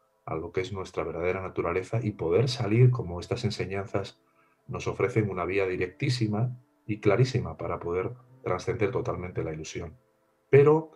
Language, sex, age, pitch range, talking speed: Spanish, male, 40-59, 100-120 Hz, 150 wpm